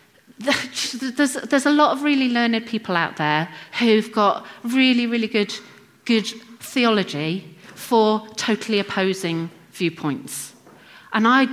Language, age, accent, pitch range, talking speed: English, 40-59, British, 170-245 Hz, 120 wpm